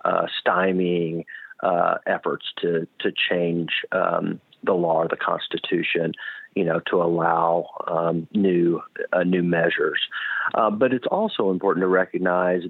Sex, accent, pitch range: male, American, 85-95 Hz